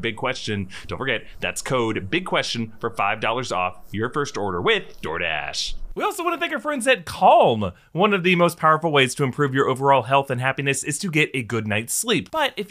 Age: 30-49